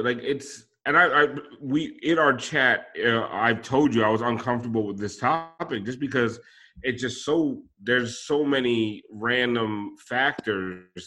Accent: American